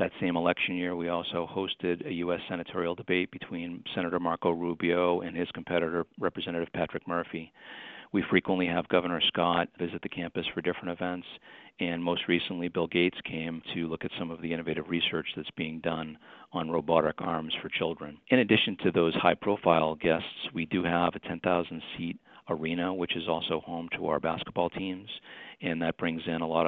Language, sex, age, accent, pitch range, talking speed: English, male, 40-59, American, 80-85 Hz, 180 wpm